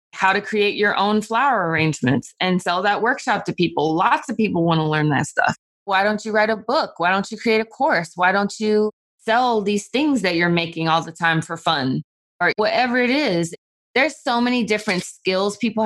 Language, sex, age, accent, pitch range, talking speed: English, female, 20-39, American, 175-220 Hz, 215 wpm